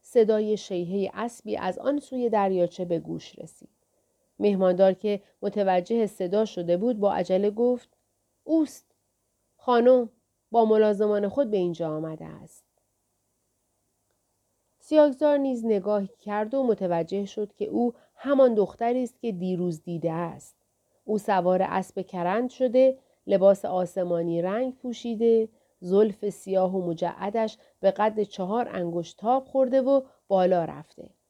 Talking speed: 125 wpm